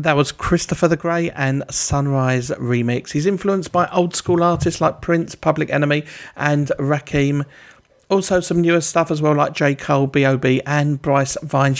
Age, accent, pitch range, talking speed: 40-59, British, 120-165 Hz, 170 wpm